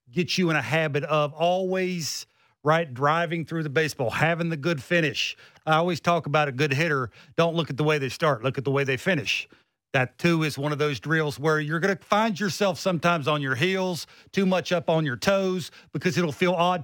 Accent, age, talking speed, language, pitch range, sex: American, 40-59, 225 wpm, English, 150-180 Hz, male